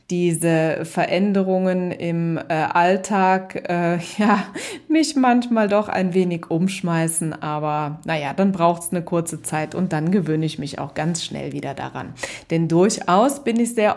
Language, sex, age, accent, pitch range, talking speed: German, female, 20-39, German, 165-215 Hz, 150 wpm